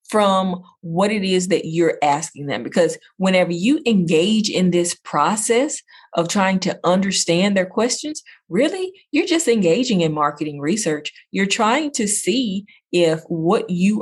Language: English